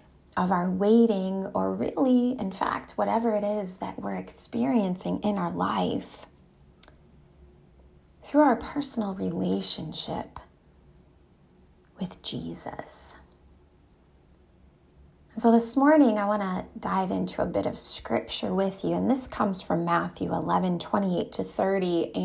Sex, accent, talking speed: female, American, 125 wpm